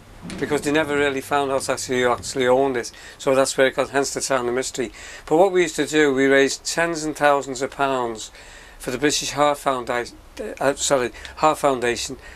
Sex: male